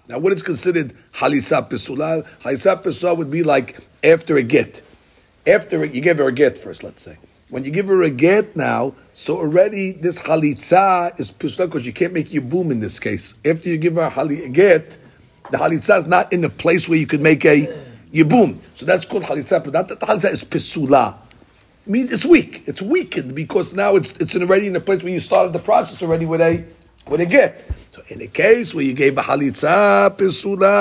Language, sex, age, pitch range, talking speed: English, male, 50-69, 145-200 Hz, 220 wpm